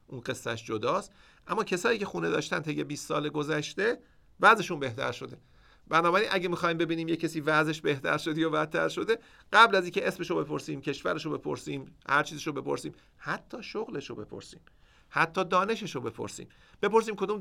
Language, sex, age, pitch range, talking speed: Persian, male, 50-69, 130-180 Hz, 155 wpm